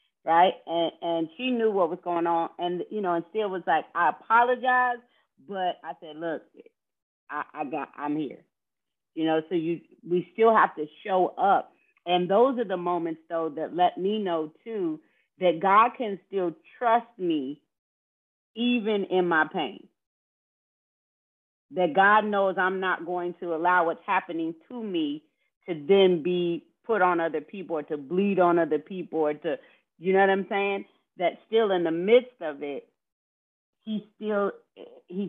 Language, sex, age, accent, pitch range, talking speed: English, female, 40-59, American, 165-220 Hz, 170 wpm